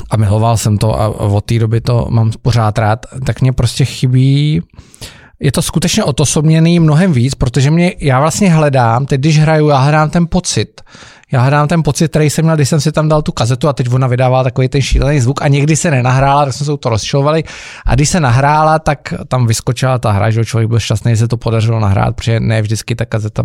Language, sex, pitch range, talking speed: Czech, male, 120-155 Hz, 225 wpm